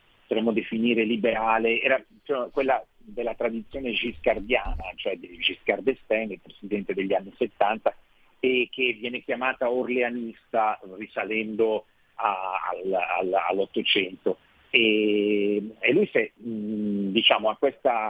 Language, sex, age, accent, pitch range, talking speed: Italian, male, 40-59, native, 100-120 Hz, 100 wpm